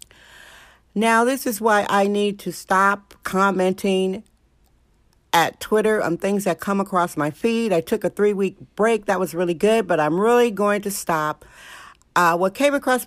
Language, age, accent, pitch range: English, 60-79, American, 180-220 Hz